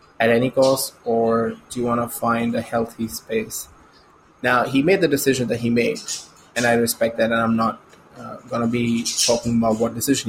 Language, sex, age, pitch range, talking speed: English, male, 20-39, 120-140 Hz, 200 wpm